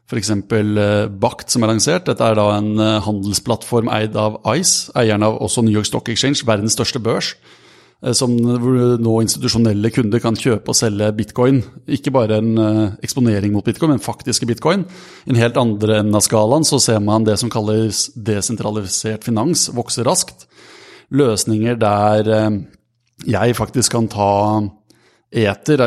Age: 30-49